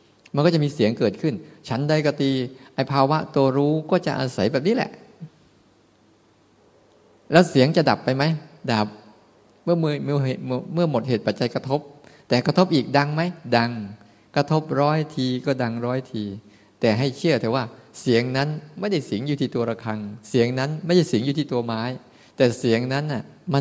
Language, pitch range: Thai, 120-155 Hz